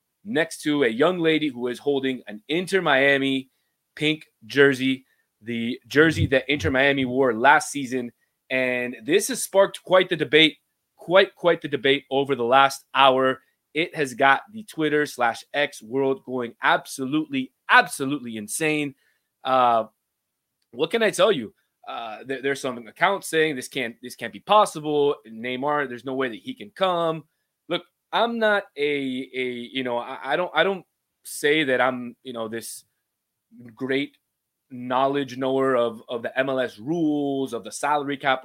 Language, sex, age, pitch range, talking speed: English, male, 20-39, 125-150 Hz, 160 wpm